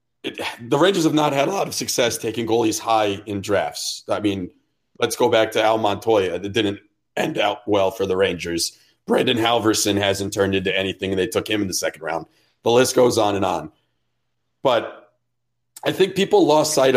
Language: English